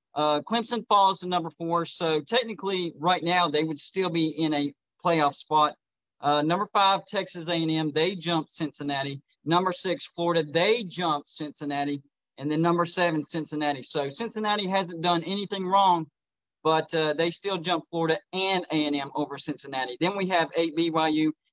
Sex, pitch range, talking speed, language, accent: male, 150-185 Hz, 160 wpm, English, American